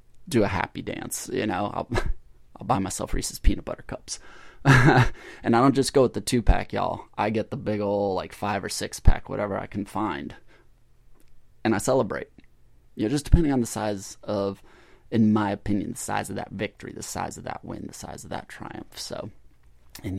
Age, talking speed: 20-39, 205 wpm